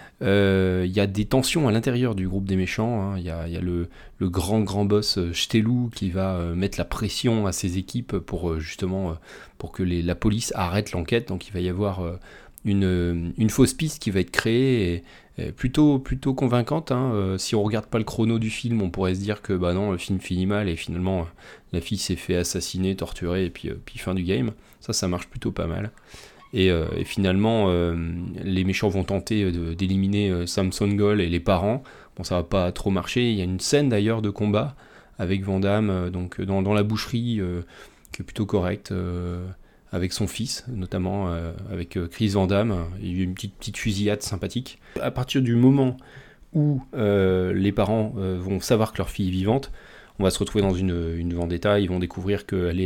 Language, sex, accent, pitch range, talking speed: French, male, French, 90-110 Hz, 220 wpm